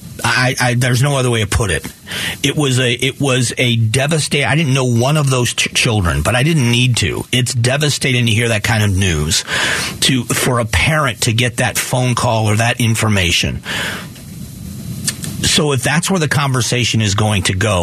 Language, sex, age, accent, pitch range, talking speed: English, male, 40-59, American, 115-140 Hz, 190 wpm